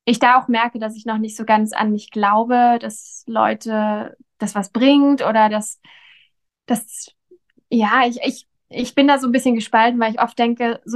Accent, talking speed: German, 190 wpm